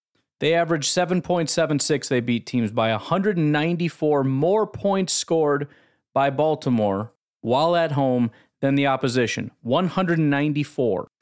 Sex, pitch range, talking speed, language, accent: male, 130-175 Hz, 105 wpm, English, American